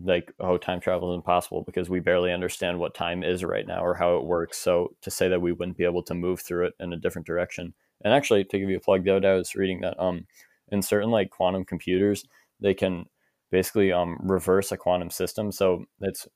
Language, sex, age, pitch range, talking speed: English, male, 20-39, 90-100 Hz, 230 wpm